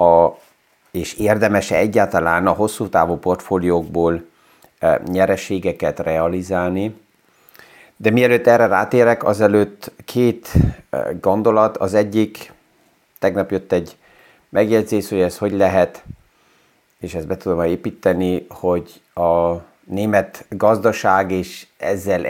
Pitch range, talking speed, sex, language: 90-110 Hz, 100 wpm, male, Hungarian